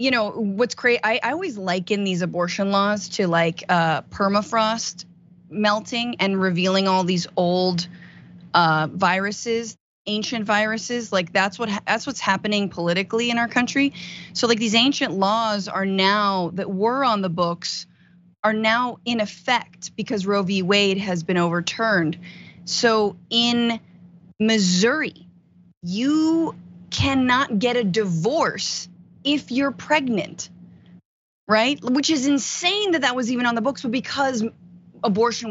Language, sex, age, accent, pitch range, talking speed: English, female, 30-49, American, 180-240 Hz, 140 wpm